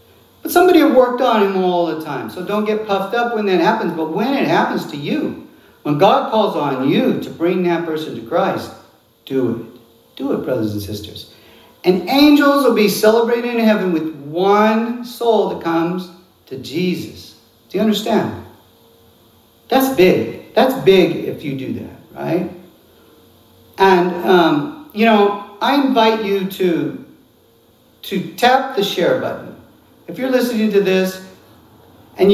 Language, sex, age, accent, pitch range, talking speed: English, male, 50-69, American, 160-215 Hz, 160 wpm